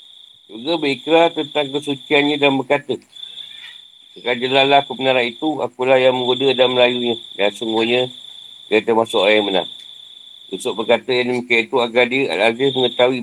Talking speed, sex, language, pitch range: 145 wpm, male, Malay, 105-130 Hz